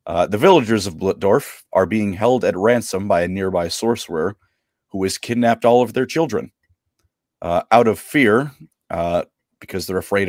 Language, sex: English, male